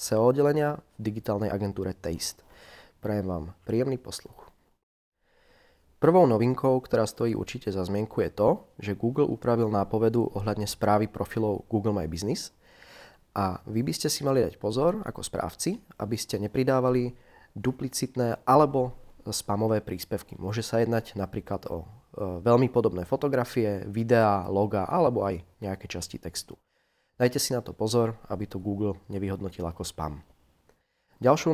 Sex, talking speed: male, 135 wpm